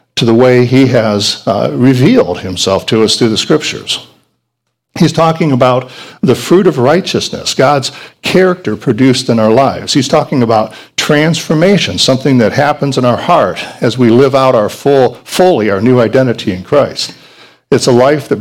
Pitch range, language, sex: 110-145 Hz, English, male